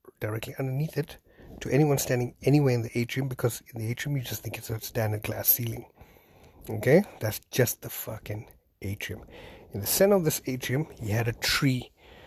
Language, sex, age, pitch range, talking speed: English, male, 50-69, 110-135 Hz, 185 wpm